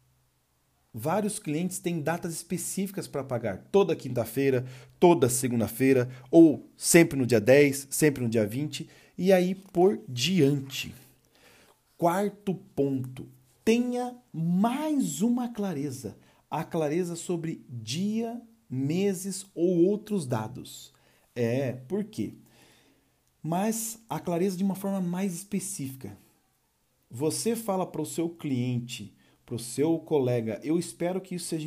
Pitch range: 125-175 Hz